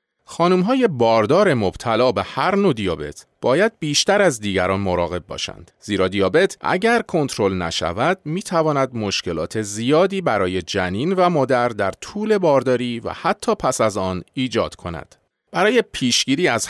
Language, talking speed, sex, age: Persian, 135 wpm, male, 30-49